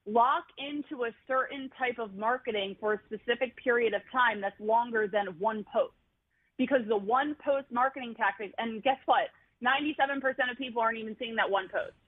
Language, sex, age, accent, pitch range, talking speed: English, female, 30-49, American, 210-250 Hz, 180 wpm